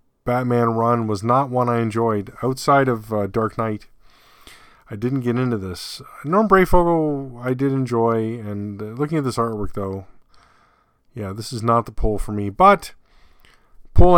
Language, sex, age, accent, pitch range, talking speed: English, male, 30-49, American, 95-130 Hz, 165 wpm